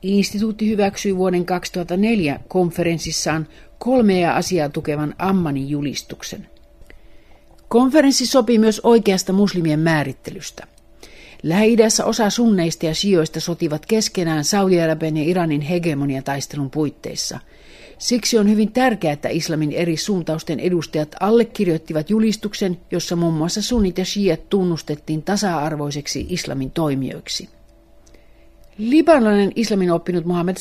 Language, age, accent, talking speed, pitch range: Finnish, 50-69, native, 110 wpm, 155-200 Hz